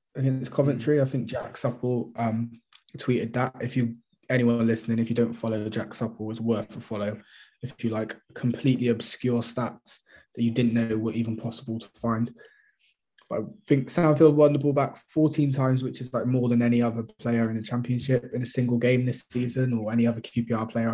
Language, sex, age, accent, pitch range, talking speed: English, male, 20-39, British, 115-125 Hz, 205 wpm